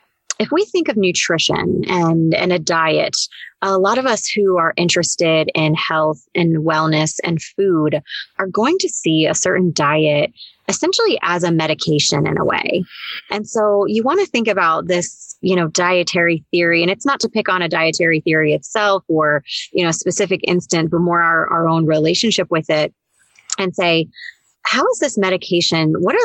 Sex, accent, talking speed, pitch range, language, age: female, American, 185 wpm, 155-190 Hz, English, 30-49